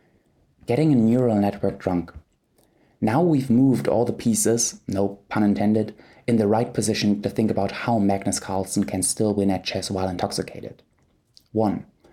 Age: 20-39